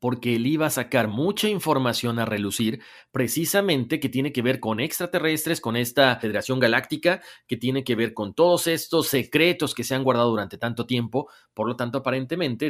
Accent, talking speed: Mexican, 185 wpm